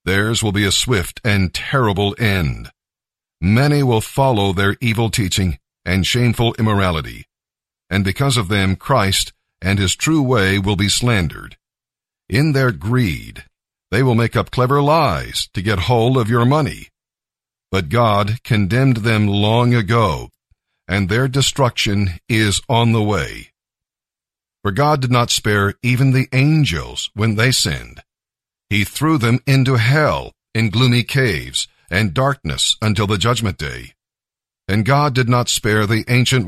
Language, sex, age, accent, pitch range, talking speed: English, male, 50-69, American, 100-125 Hz, 145 wpm